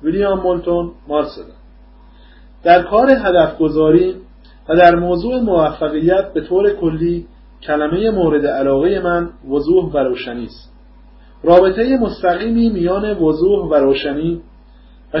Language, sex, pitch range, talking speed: English, male, 145-200 Hz, 115 wpm